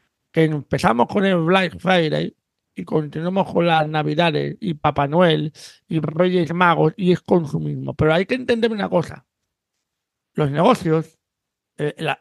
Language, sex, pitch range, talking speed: Spanish, male, 155-215 Hz, 145 wpm